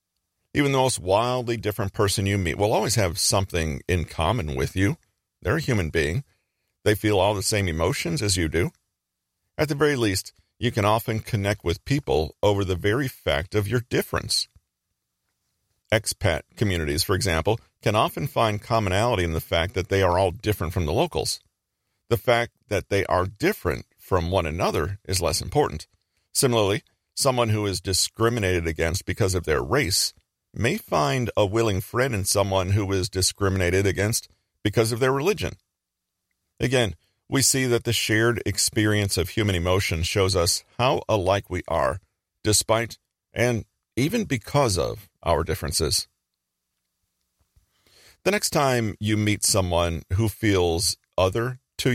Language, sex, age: English, male, 50-69